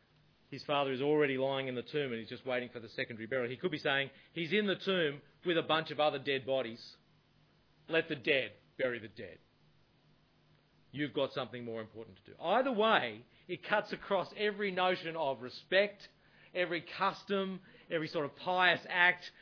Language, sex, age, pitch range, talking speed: English, male, 40-59, 130-170 Hz, 185 wpm